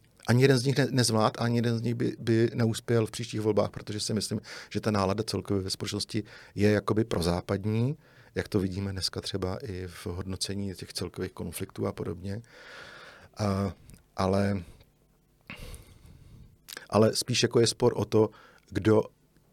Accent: native